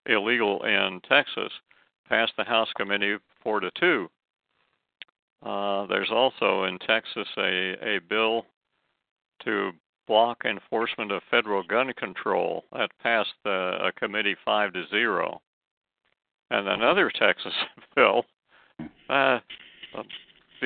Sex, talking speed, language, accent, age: male, 100 wpm, English, American, 60-79